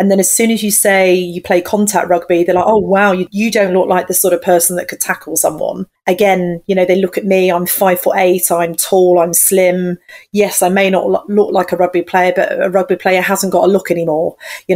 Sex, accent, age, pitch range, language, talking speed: female, British, 30-49, 175-195 Hz, English, 255 wpm